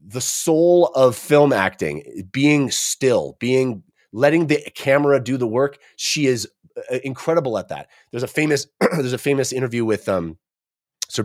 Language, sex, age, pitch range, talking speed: English, male, 30-49, 120-155 Hz, 155 wpm